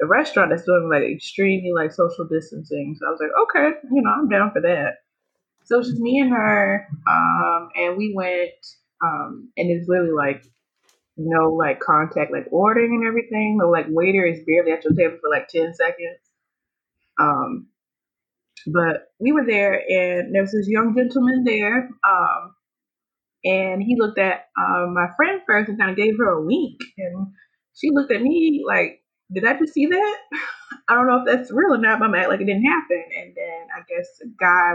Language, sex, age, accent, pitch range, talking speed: English, female, 20-39, American, 180-300 Hz, 195 wpm